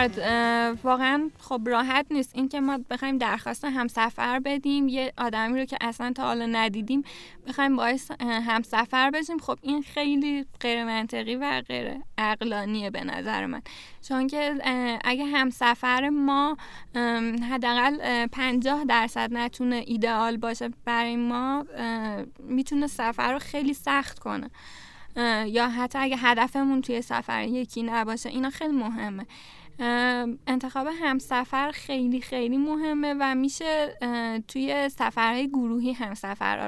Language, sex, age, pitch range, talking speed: Persian, female, 10-29, 235-270 Hz, 120 wpm